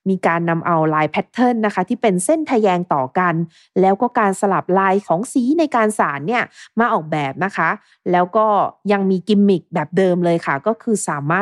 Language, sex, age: Thai, female, 20-39